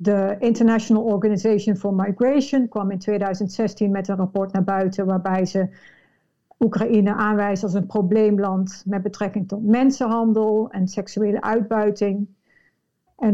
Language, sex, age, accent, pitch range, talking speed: Dutch, female, 60-79, Dutch, 200-230 Hz, 125 wpm